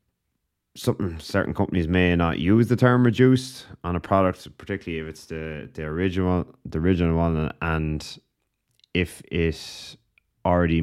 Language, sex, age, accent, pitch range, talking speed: English, male, 20-39, Irish, 75-95 Hz, 140 wpm